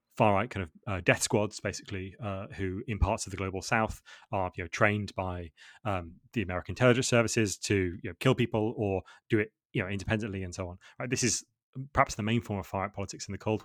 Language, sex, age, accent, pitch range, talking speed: English, male, 20-39, British, 100-130 Hz, 200 wpm